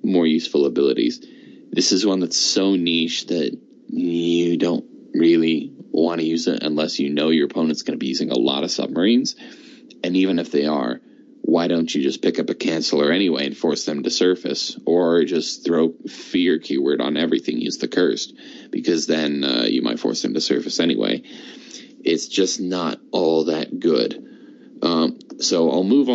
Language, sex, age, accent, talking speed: English, male, 20-39, American, 180 wpm